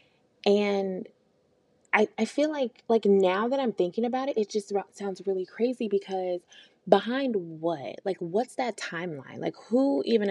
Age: 20-39